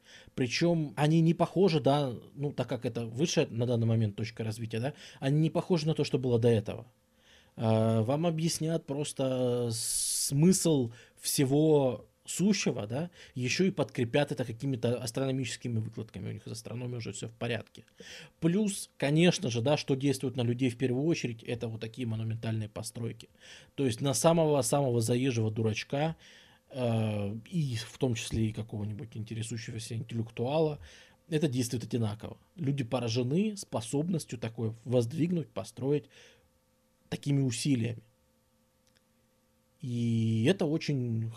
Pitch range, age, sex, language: 115-150 Hz, 20-39, male, Russian